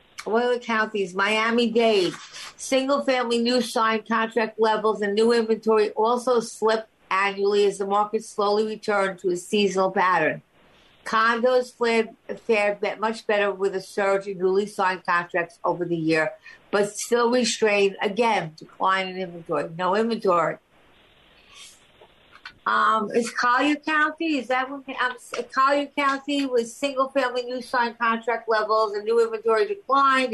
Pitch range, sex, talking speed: 200-245 Hz, female, 130 wpm